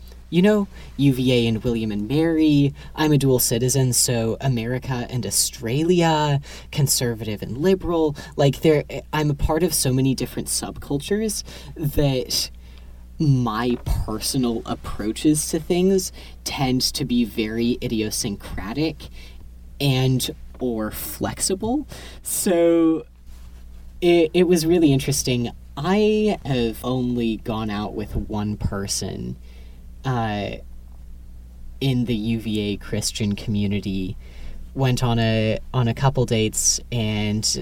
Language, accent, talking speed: English, American, 110 wpm